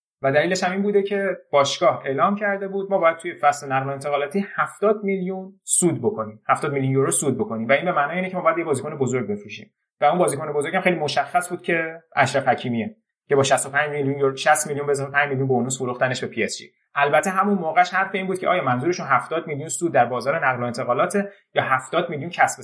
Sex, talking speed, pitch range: male, 215 wpm, 135-190 Hz